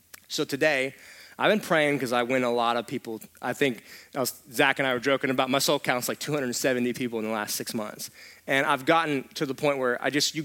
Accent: American